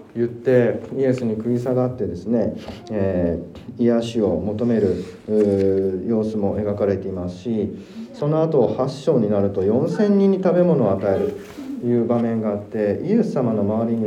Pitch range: 105-140 Hz